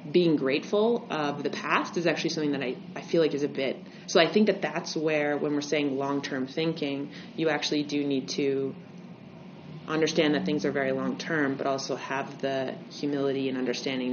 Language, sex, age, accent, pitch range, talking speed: English, female, 30-49, American, 135-165 Hz, 190 wpm